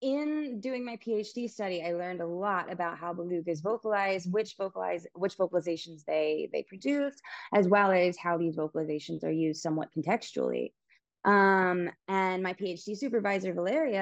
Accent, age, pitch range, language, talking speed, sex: American, 20-39, 165-205 Hz, English, 155 wpm, female